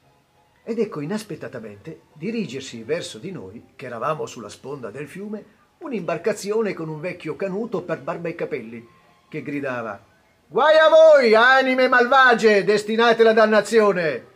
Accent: native